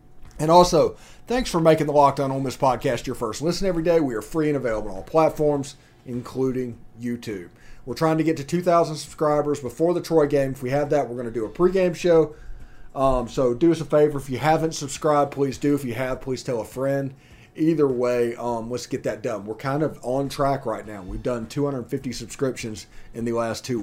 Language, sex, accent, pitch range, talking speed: English, male, American, 120-155 Hz, 220 wpm